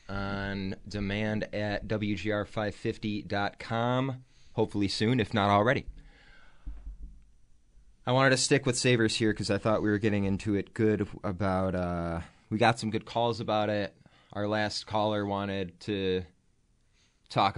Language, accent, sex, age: English, American, male, 20-39